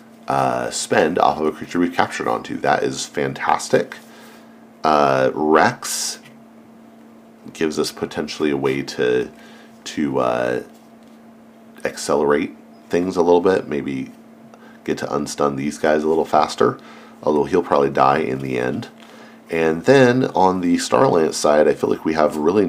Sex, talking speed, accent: male, 145 wpm, American